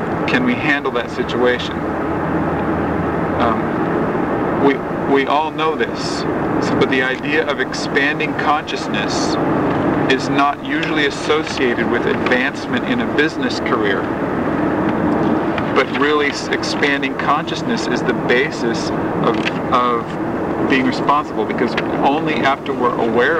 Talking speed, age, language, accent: 110 wpm, 40-59, English, American